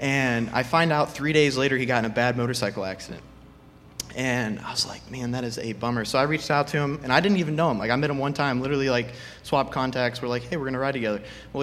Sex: male